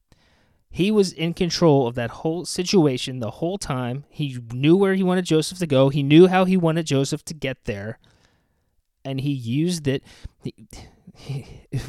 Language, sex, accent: English, male, American